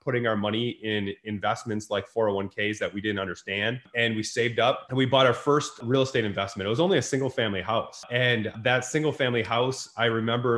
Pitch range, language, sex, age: 110-140 Hz, English, male, 20-39